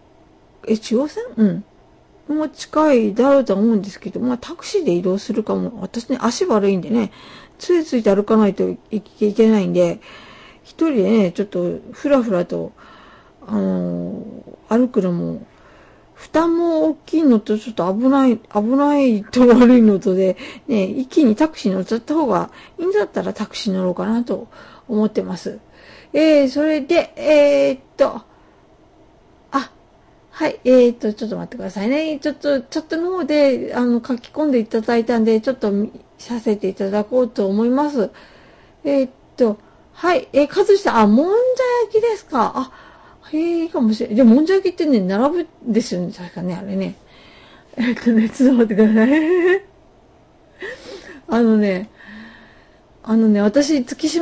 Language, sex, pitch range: Japanese, female, 210-300 Hz